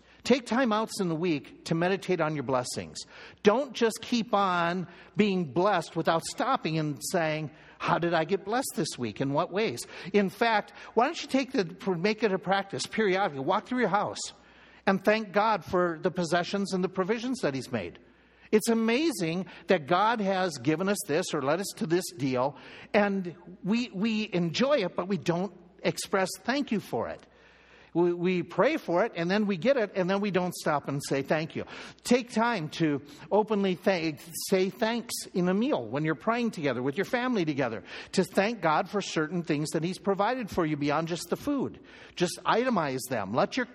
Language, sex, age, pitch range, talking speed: English, male, 60-79, 165-210 Hz, 195 wpm